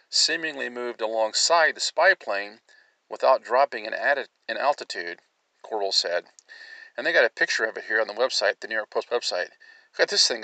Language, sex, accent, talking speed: English, male, American, 190 wpm